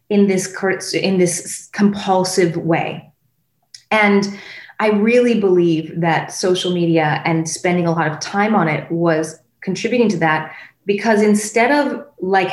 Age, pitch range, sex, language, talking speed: 30-49, 170-210 Hz, female, English, 140 wpm